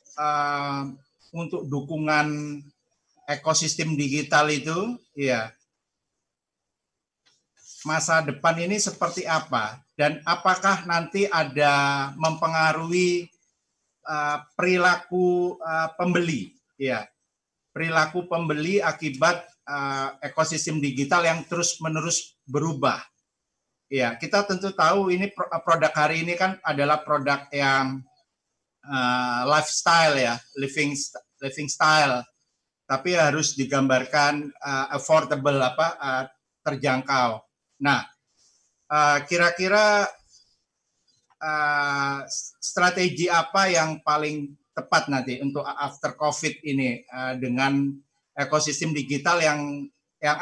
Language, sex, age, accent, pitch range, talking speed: Indonesian, male, 50-69, native, 140-165 Hz, 95 wpm